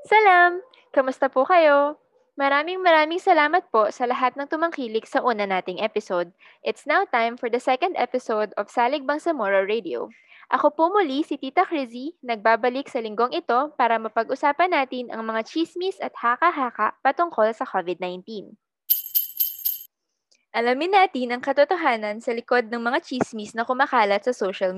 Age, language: 20-39, Filipino